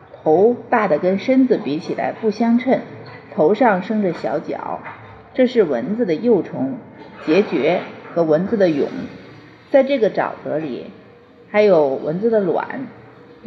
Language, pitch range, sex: Chinese, 185-250 Hz, female